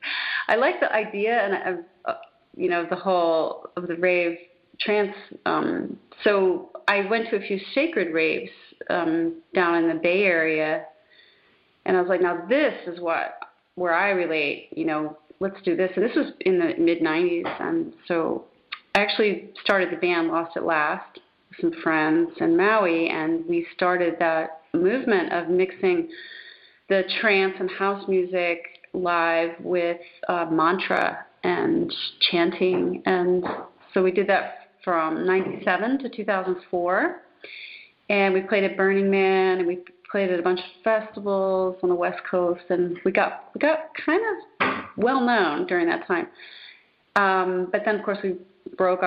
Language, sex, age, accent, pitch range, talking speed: English, female, 30-49, American, 180-265 Hz, 160 wpm